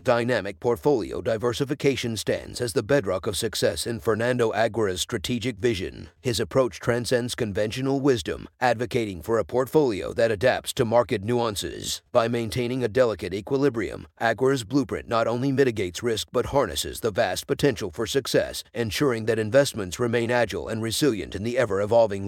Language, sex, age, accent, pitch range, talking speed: English, male, 50-69, American, 115-130 Hz, 150 wpm